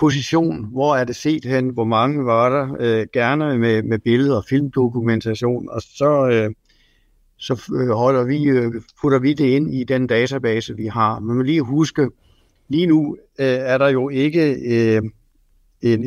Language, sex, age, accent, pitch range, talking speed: Danish, male, 60-79, native, 110-135 Hz, 170 wpm